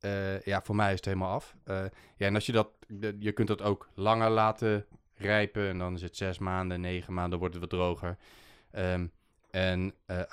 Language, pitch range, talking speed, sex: Dutch, 95-115 Hz, 215 wpm, male